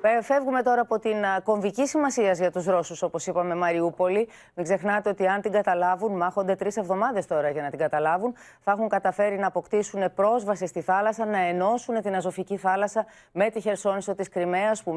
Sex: female